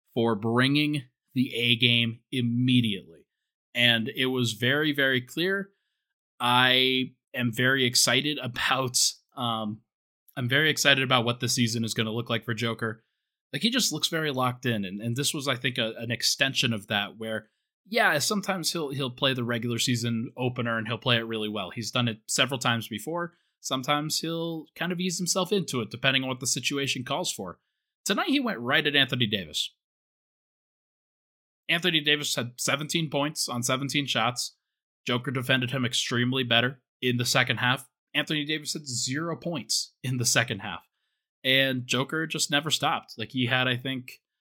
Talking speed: 175 wpm